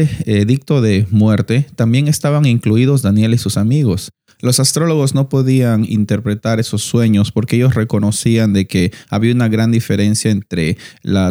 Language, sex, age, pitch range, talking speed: Spanish, male, 30-49, 100-125 Hz, 150 wpm